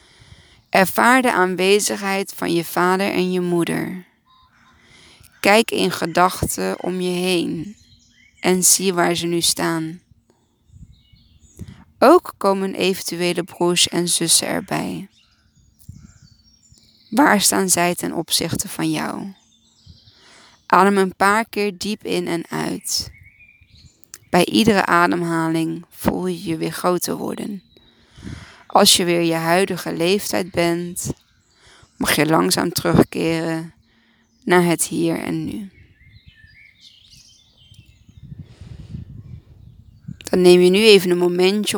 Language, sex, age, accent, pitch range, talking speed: Dutch, female, 20-39, Dutch, 165-190 Hz, 110 wpm